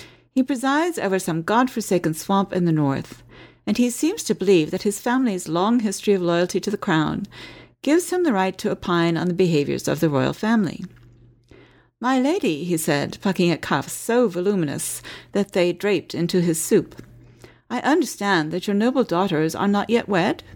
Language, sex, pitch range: English, female, 160-230 Hz